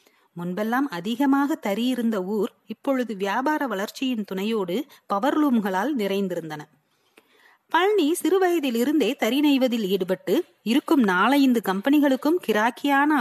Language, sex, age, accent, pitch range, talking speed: Tamil, female, 30-49, native, 205-275 Hz, 65 wpm